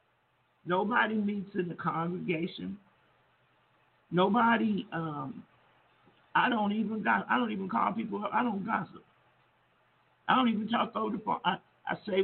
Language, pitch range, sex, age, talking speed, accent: English, 175-220 Hz, male, 50-69, 145 wpm, American